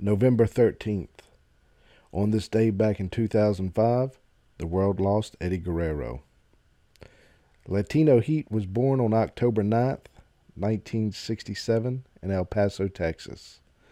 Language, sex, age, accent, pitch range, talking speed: English, male, 40-59, American, 90-115 Hz, 110 wpm